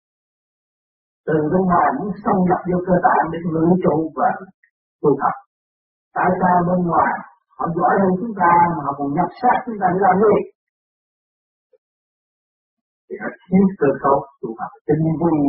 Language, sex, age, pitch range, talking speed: Vietnamese, male, 50-69, 145-195 Hz, 75 wpm